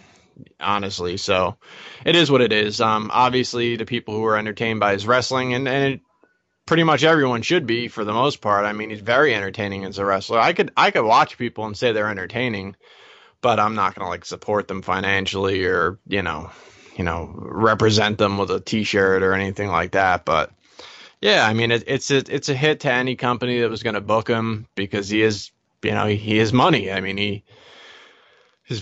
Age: 20-39